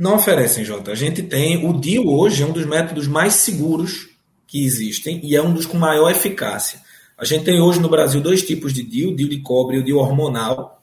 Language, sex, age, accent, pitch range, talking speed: Portuguese, male, 20-39, Brazilian, 135-180 Hz, 225 wpm